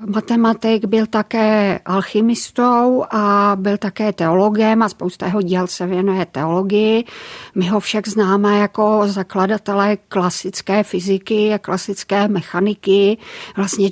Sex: female